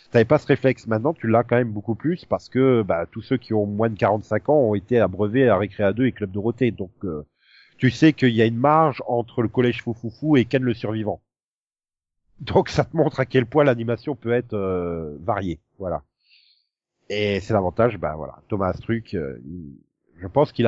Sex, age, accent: male, 40-59, French